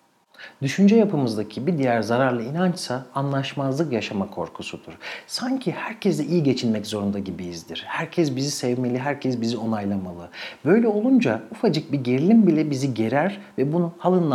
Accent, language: native, Turkish